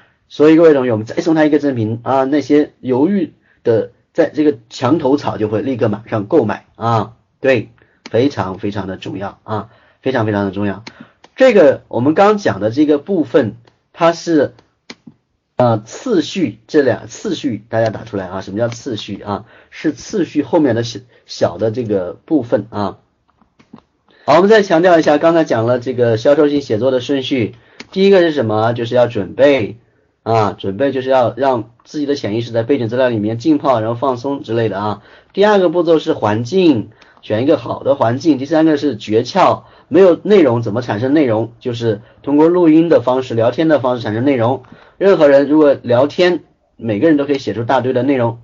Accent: native